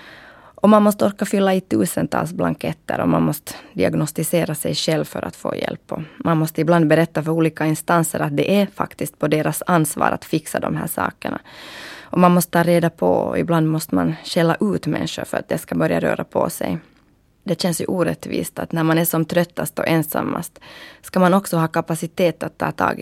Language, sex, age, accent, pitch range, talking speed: Swedish, female, 20-39, native, 155-200 Hz, 205 wpm